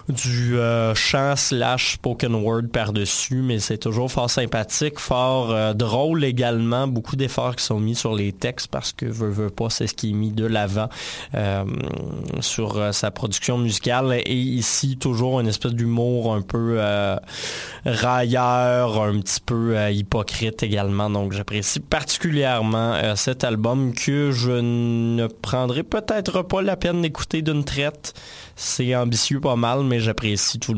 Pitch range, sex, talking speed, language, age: 110-145 Hz, male, 160 wpm, French, 20-39